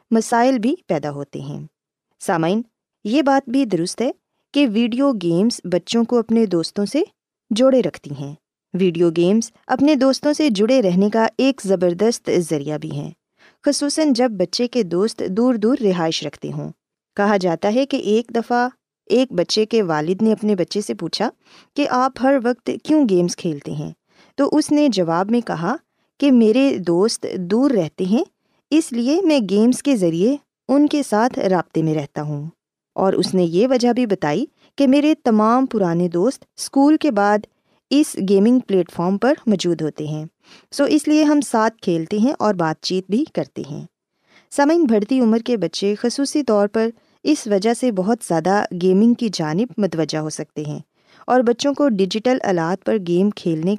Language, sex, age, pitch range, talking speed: Urdu, female, 20-39, 180-260 Hz, 175 wpm